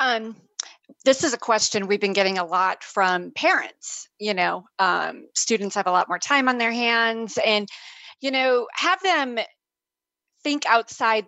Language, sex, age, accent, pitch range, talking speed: English, female, 30-49, American, 200-230 Hz, 165 wpm